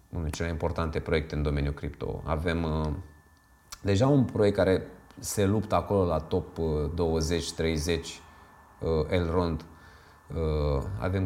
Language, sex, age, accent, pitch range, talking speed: Romanian, male, 20-39, native, 80-105 Hz, 140 wpm